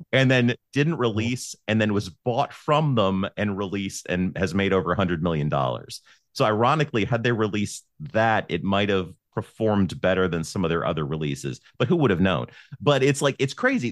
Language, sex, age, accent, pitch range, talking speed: English, male, 30-49, American, 100-135 Hz, 205 wpm